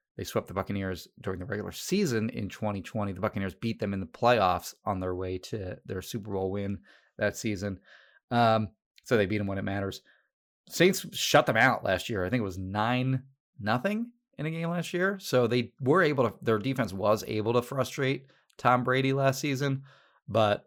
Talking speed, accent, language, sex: 195 wpm, American, English, male